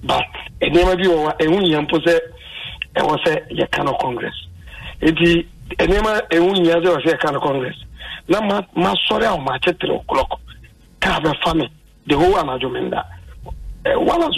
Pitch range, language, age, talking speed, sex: 135-170 Hz, English, 50-69, 170 wpm, male